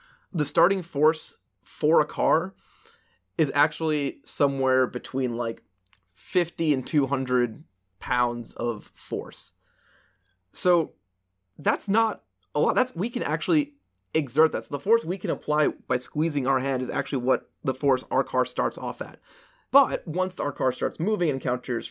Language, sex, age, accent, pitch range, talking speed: English, male, 20-39, American, 120-160 Hz, 150 wpm